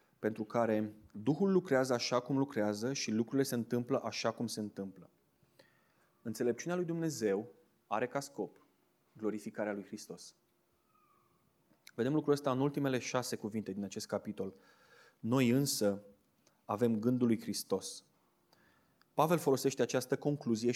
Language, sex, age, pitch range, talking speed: Romanian, male, 20-39, 110-145 Hz, 125 wpm